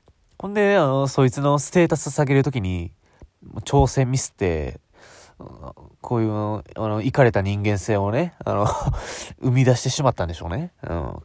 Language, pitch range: Japanese, 95-140 Hz